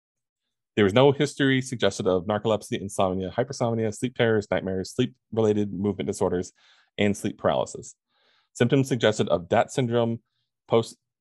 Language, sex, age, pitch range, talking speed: English, male, 20-39, 100-120 Hz, 130 wpm